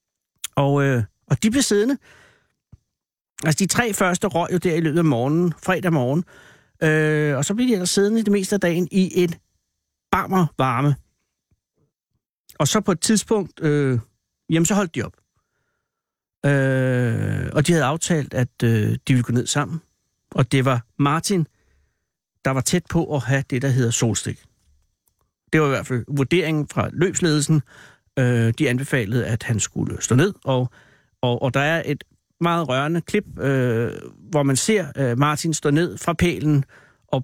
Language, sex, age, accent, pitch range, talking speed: Danish, male, 60-79, native, 125-165 Hz, 170 wpm